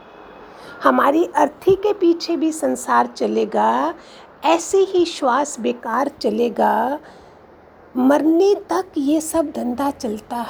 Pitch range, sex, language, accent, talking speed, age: 230-315 Hz, female, Hindi, native, 105 wpm, 50-69